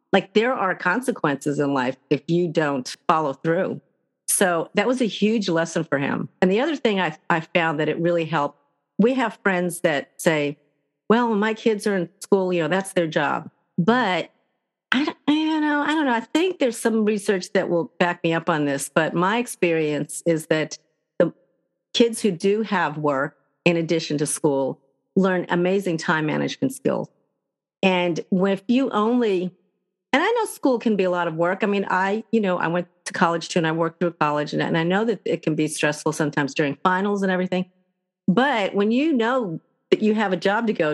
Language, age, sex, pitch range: English, 50-69, female, 165-210 Hz